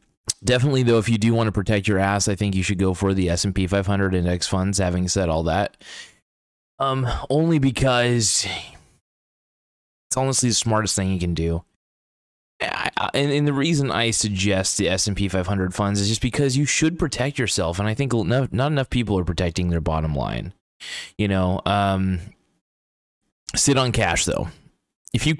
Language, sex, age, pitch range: English, male, 20-39, 90-110 Hz